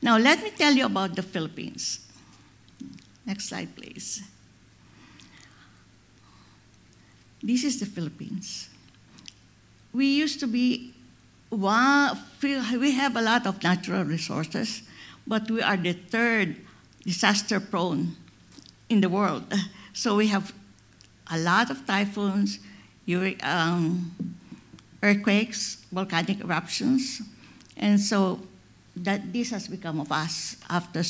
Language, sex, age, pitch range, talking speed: English, female, 50-69, 180-240 Hz, 105 wpm